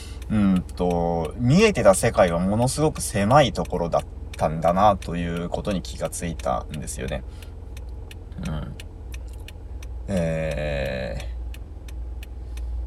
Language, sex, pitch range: Japanese, male, 75-90 Hz